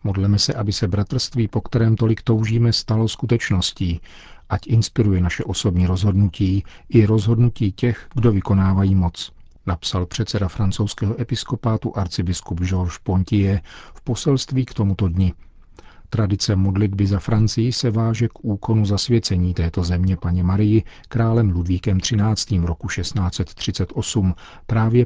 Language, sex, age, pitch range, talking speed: Czech, male, 40-59, 90-110 Hz, 125 wpm